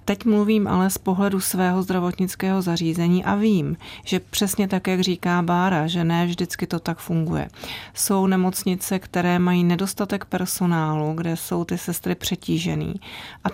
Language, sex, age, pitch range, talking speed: Czech, female, 40-59, 175-205 Hz, 150 wpm